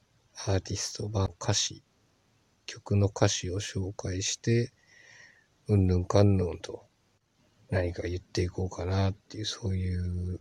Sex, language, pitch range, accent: male, Japanese, 95-115 Hz, native